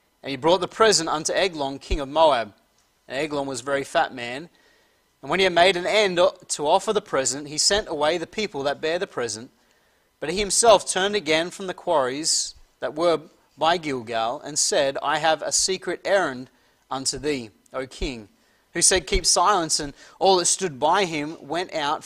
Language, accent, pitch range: English, Australian, 140-180 Hz